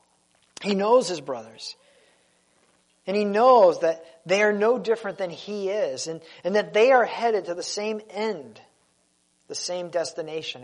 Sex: male